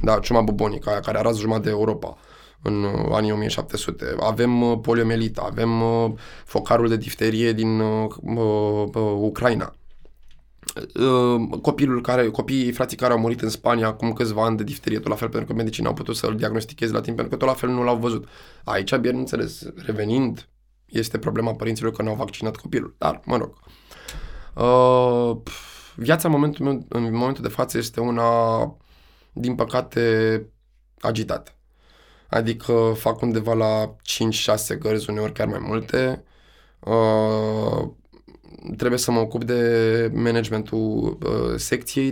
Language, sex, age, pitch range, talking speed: Romanian, male, 20-39, 110-120 Hz, 150 wpm